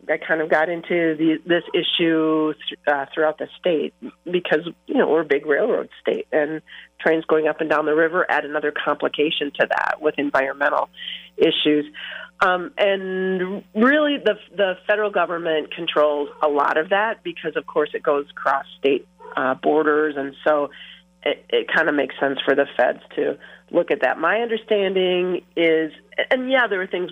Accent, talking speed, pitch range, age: American, 180 wpm, 145-180 Hz, 40-59